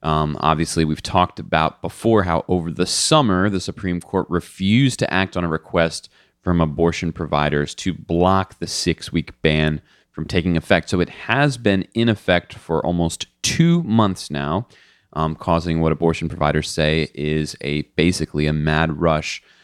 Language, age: English, 30-49